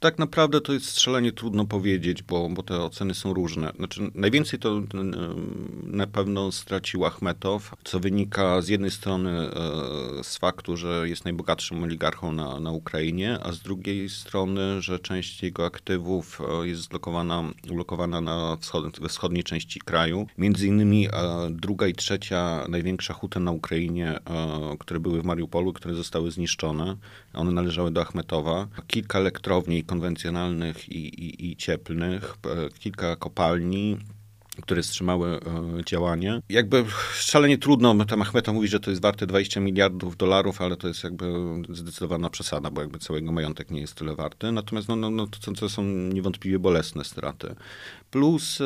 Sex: male